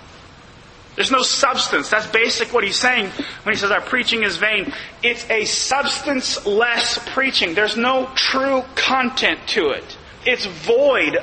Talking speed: 145 wpm